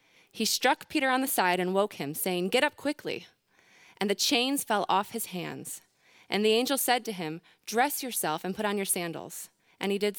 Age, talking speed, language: 20-39, 210 wpm, English